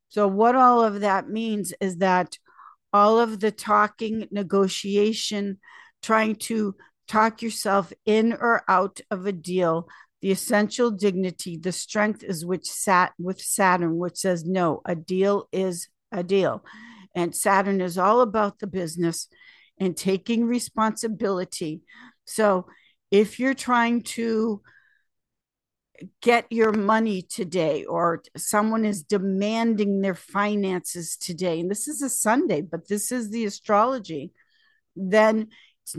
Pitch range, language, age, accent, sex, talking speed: 185-225 Hz, English, 50-69, American, female, 130 wpm